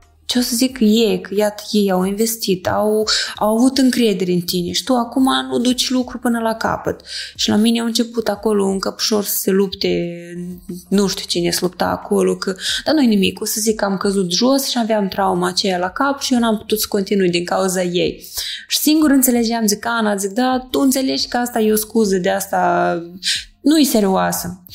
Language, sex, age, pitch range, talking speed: Romanian, female, 20-39, 185-230 Hz, 210 wpm